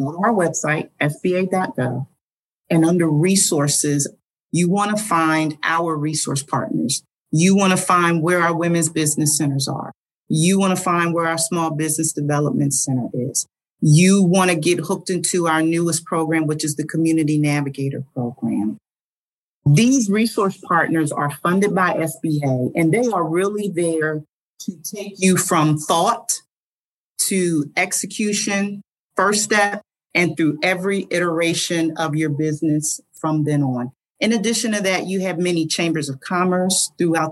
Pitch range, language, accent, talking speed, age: 155-185 Hz, English, American, 150 wpm, 40-59